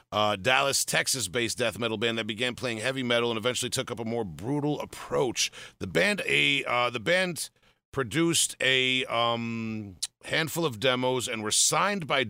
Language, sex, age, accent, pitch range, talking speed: English, male, 40-59, American, 110-135 Hz, 175 wpm